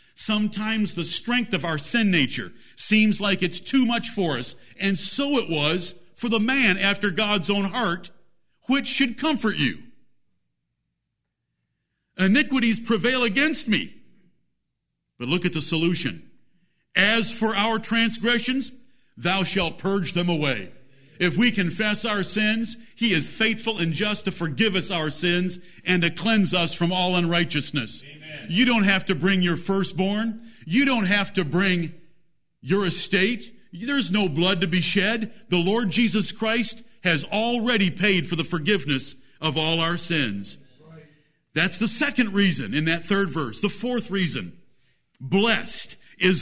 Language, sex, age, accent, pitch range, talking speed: English, male, 50-69, American, 165-220 Hz, 150 wpm